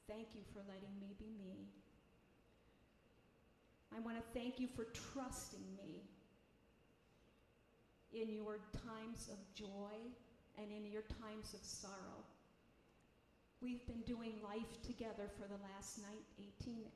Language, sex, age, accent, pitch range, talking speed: English, female, 50-69, American, 205-230 Hz, 125 wpm